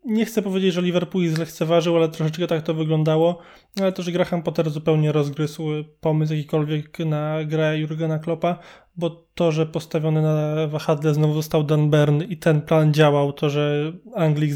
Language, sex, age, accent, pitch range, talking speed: Polish, male, 20-39, native, 155-175 Hz, 170 wpm